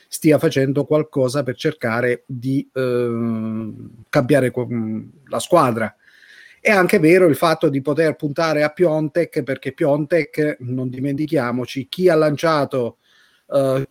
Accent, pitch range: native, 135-170 Hz